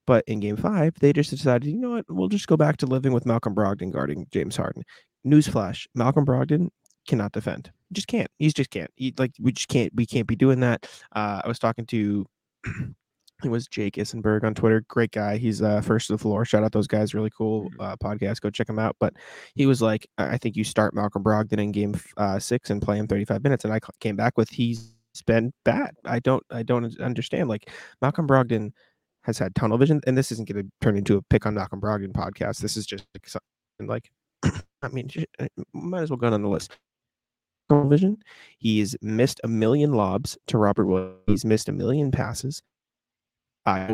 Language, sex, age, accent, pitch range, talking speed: English, male, 20-39, American, 105-135 Hz, 210 wpm